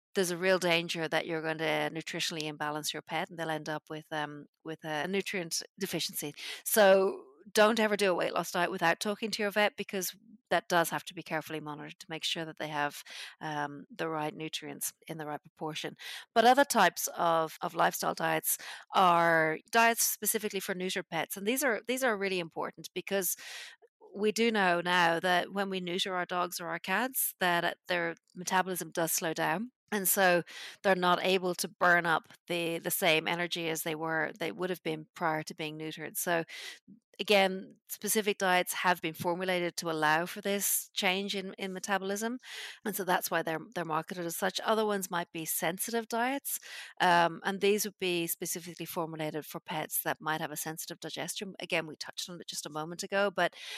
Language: English